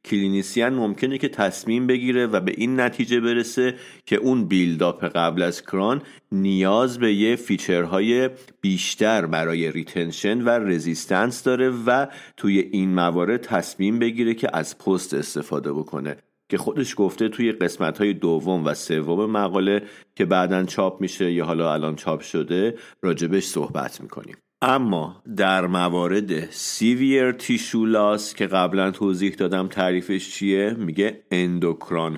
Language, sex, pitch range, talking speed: Persian, male, 85-110 Hz, 135 wpm